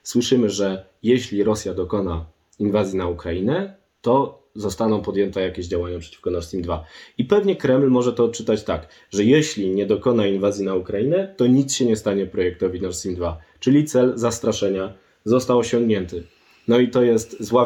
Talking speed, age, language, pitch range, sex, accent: 170 wpm, 20-39, Polish, 100-115 Hz, male, native